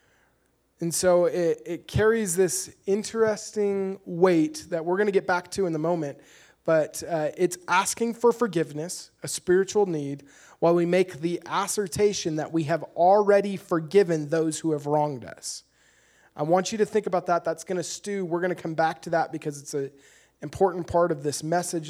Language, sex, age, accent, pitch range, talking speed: English, male, 20-39, American, 165-205 Hz, 185 wpm